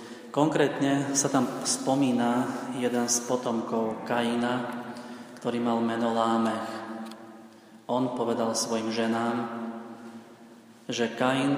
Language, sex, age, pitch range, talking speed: Slovak, male, 30-49, 115-125 Hz, 95 wpm